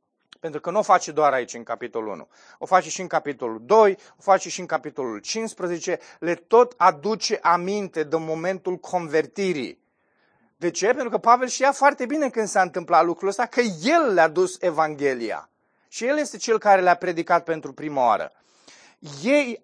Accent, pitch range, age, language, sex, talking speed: native, 165-220 Hz, 30-49, Romanian, male, 175 wpm